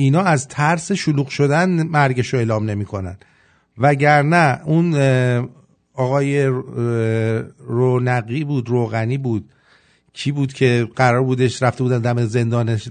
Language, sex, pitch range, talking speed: English, male, 100-150 Hz, 110 wpm